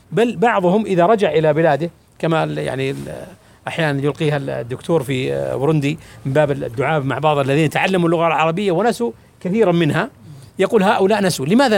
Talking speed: 150 wpm